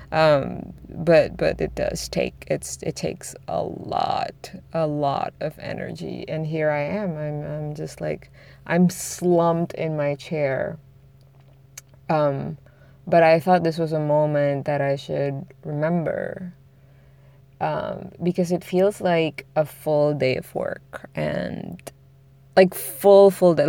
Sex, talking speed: female, 140 wpm